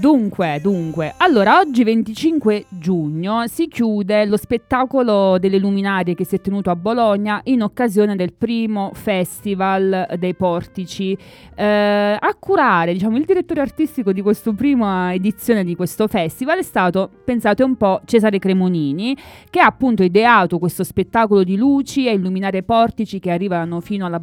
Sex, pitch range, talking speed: female, 180-220 Hz, 150 wpm